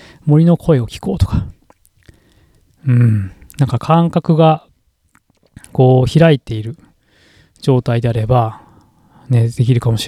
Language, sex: Japanese, male